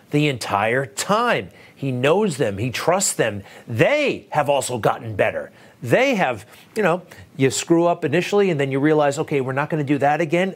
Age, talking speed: 40-59, 190 wpm